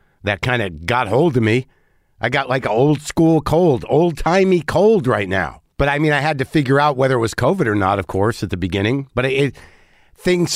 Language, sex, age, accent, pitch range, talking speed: English, male, 50-69, American, 105-135 Hz, 225 wpm